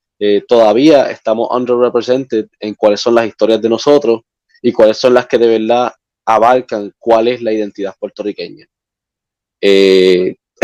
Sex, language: male, Spanish